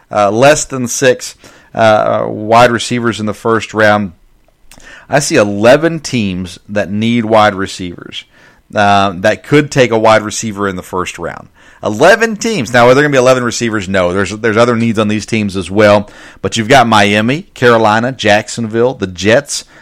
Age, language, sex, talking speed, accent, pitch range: 40-59, English, male, 175 wpm, American, 100-125 Hz